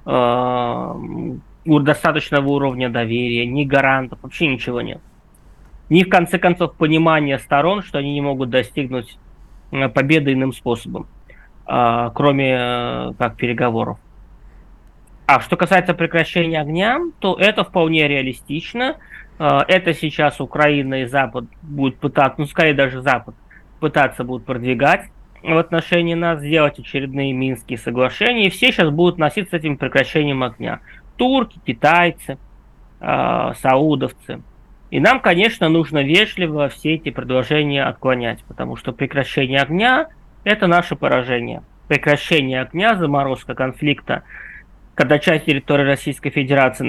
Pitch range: 130-165 Hz